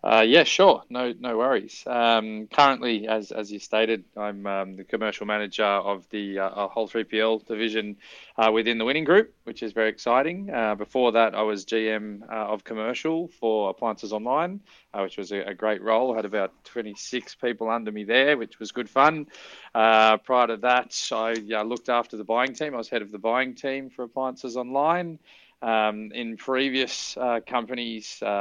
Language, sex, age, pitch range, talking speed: English, male, 20-39, 105-115 Hz, 190 wpm